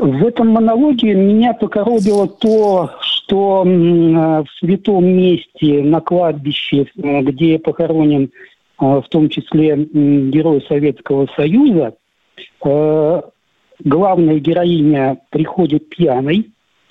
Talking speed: 85 wpm